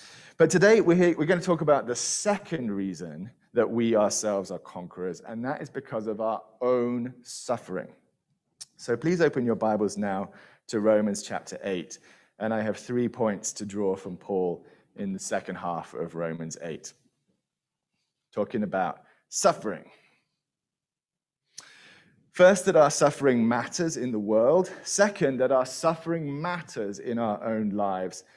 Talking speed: 145 wpm